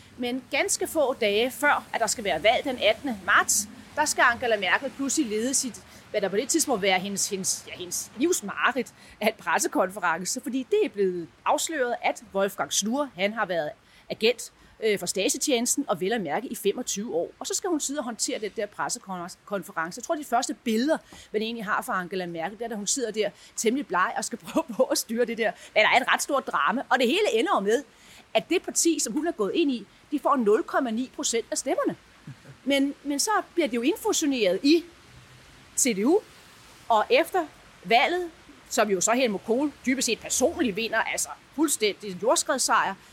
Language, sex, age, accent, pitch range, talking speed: English, female, 30-49, Danish, 210-315 Hz, 195 wpm